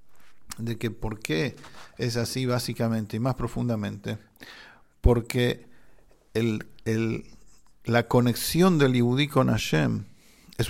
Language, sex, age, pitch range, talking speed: English, male, 50-69, 110-150 Hz, 100 wpm